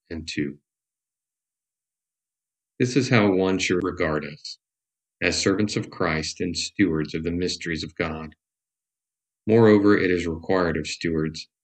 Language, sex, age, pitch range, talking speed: English, male, 40-59, 80-100 Hz, 135 wpm